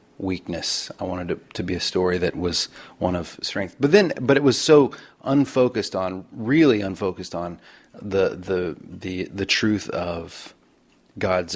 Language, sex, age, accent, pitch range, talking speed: English, male, 30-49, American, 90-110 Hz, 160 wpm